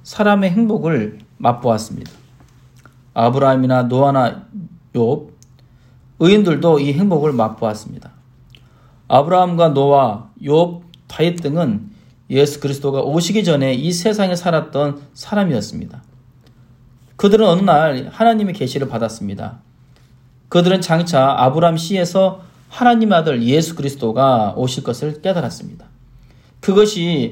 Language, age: Korean, 40-59